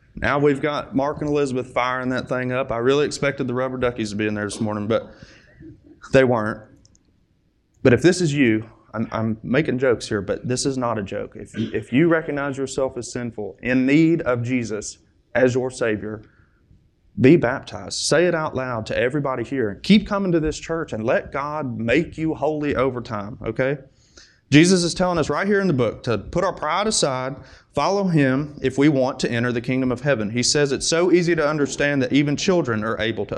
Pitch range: 115-150 Hz